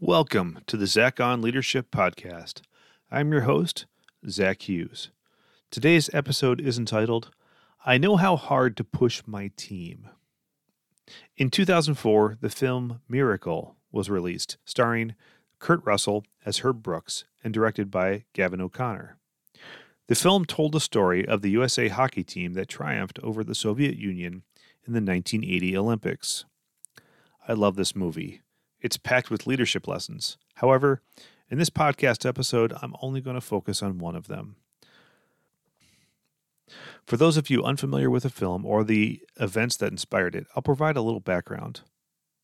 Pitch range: 100-130 Hz